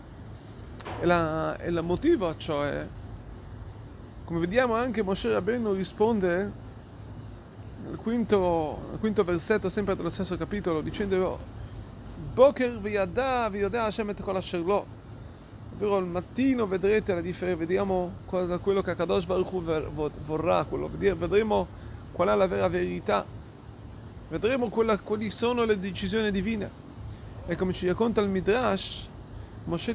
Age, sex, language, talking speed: 30-49, male, Italian, 120 wpm